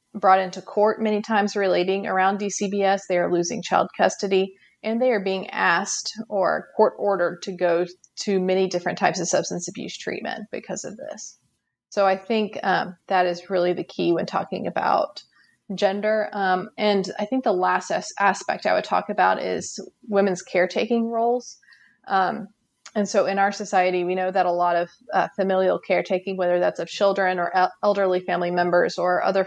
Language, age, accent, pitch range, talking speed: English, 30-49, American, 180-205 Hz, 175 wpm